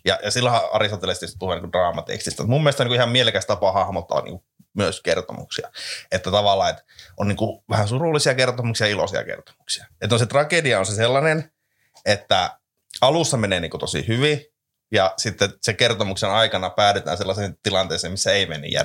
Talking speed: 170 wpm